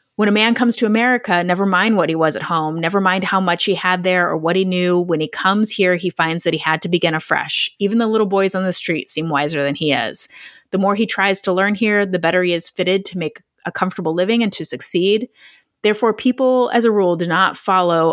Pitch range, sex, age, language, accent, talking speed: 165-210 Hz, female, 30-49, English, American, 250 wpm